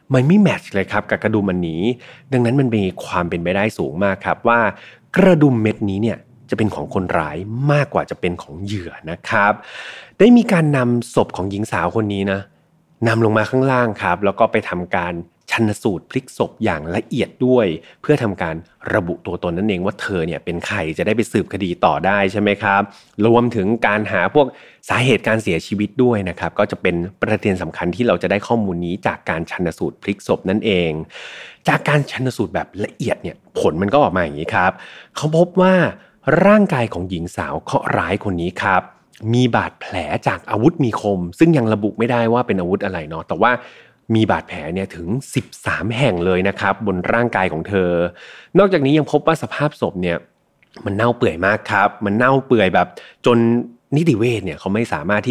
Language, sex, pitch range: Thai, male, 95-125 Hz